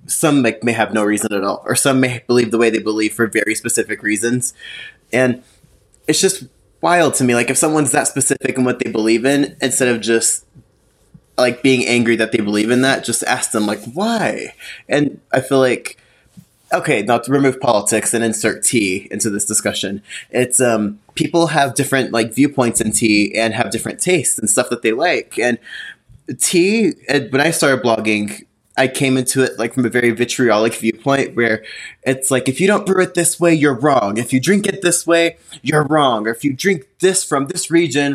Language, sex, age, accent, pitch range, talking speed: English, male, 20-39, American, 115-145 Hz, 200 wpm